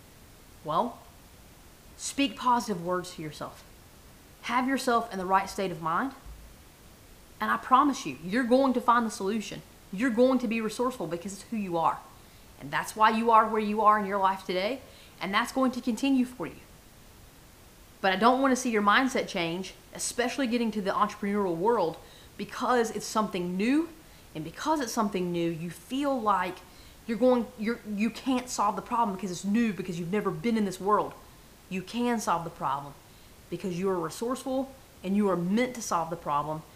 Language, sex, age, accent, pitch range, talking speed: English, female, 30-49, American, 175-235 Hz, 190 wpm